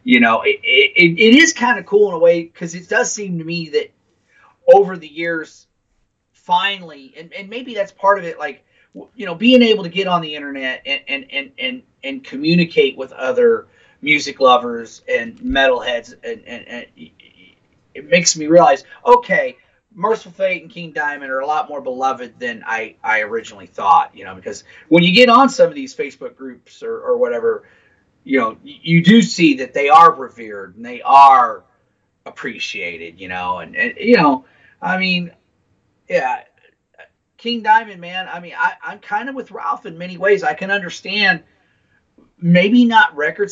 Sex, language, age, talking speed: male, English, 30-49, 180 wpm